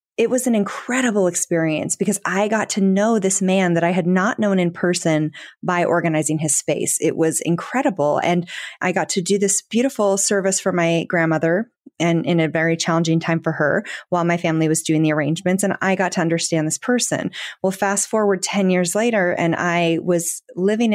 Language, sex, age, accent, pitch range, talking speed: English, female, 30-49, American, 165-195 Hz, 200 wpm